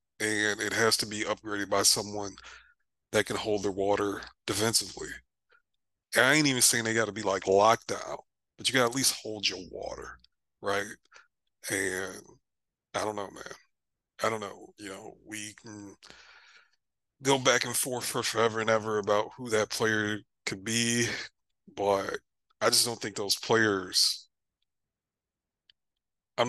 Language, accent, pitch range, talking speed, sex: English, American, 105-130 Hz, 160 wpm, male